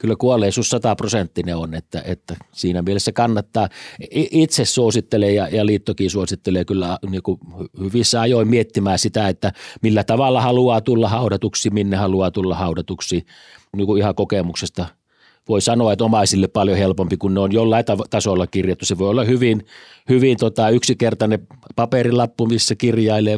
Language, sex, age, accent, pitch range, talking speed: Finnish, male, 30-49, native, 95-115 Hz, 145 wpm